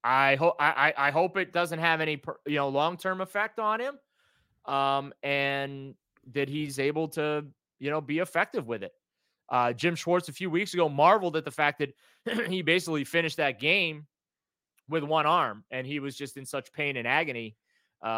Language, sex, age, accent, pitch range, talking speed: English, male, 30-49, American, 135-175 Hz, 190 wpm